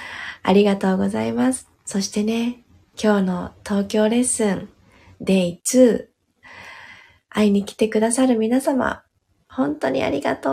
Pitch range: 185-250 Hz